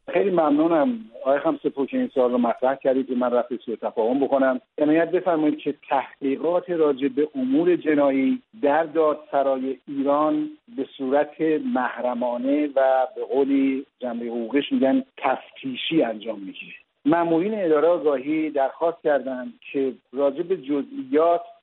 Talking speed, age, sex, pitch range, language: 130 wpm, 50-69, male, 135-165 Hz, English